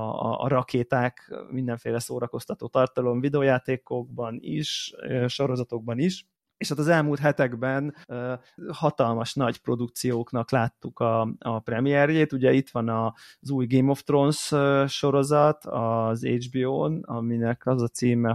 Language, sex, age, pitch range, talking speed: Hungarian, male, 30-49, 120-150 Hz, 120 wpm